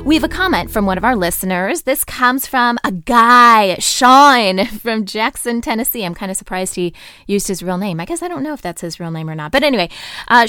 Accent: American